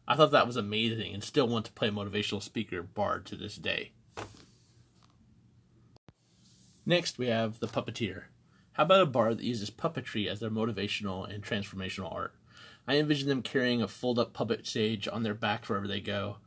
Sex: male